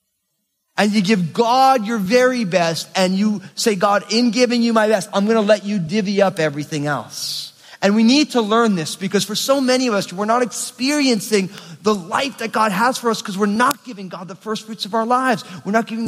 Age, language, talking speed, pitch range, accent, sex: 30-49, English, 230 wpm, 160-220 Hz, American, male